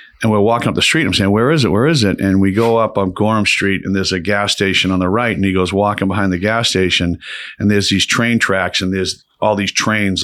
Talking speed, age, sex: 280 wpm, 50-69, male